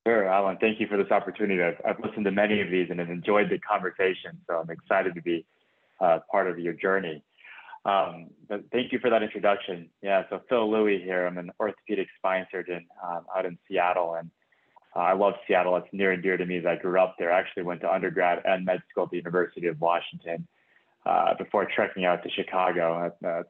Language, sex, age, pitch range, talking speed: English, male, 20-39, 90-100 Hz, 220 wpm